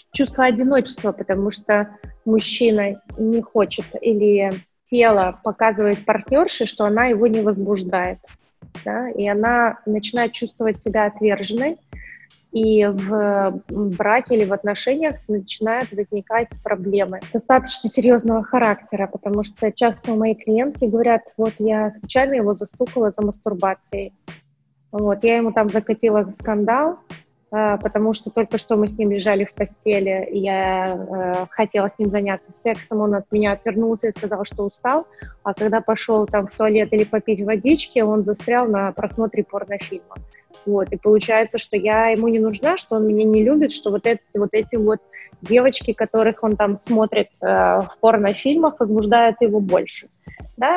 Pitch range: 205-230 Hz